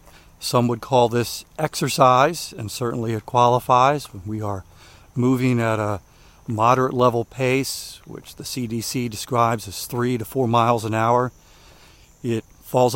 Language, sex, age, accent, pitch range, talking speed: English, male, 50-69, American, 110-130 Hz, 145 wpm